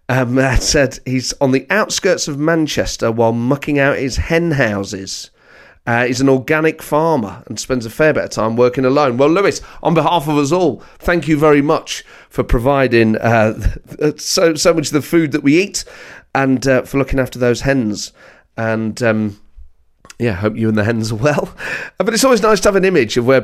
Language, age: English, 30-49